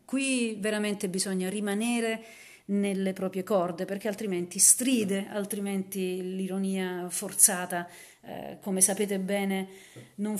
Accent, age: native, 40-59